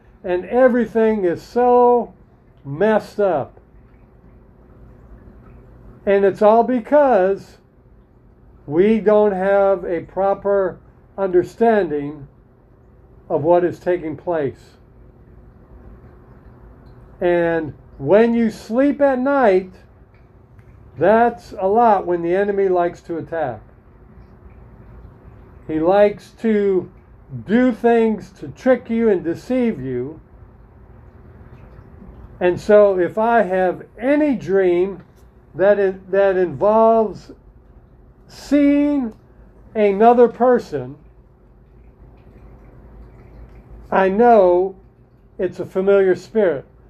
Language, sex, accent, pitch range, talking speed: English, male, American, 150-220 Hz, 85 wpm